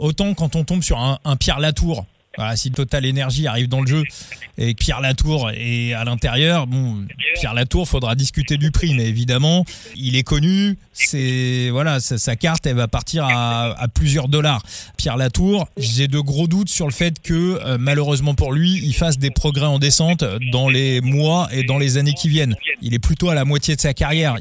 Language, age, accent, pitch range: French, 20-39, French, 120-155 Hz